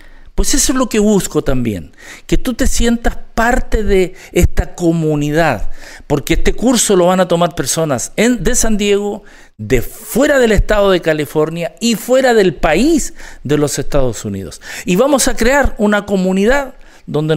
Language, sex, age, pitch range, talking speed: English, male, 50-69, 135-210 Hz, 165 wpm